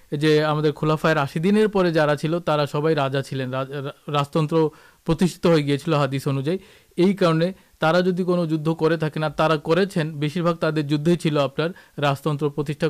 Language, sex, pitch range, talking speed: Urdu, male, 145-165 Hz, 110 wpm